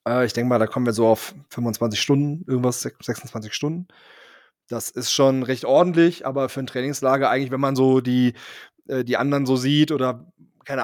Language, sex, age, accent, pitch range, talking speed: German, male, 20-39, German, 130-145 Hz, 185 wpm